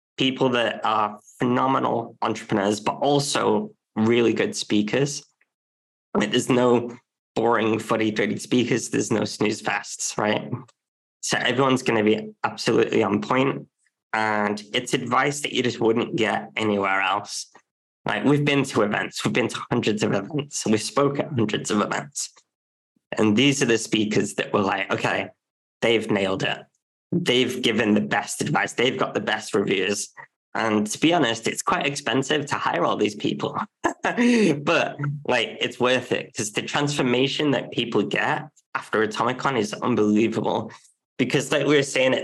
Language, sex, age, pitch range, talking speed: English, male, 20-39, 110-140 Hz, 160 wpm